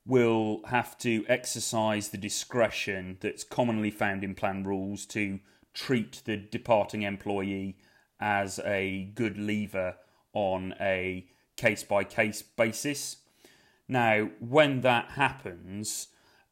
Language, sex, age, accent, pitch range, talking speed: English, male, 30-49, British, 105-120 Hz, 105 wpm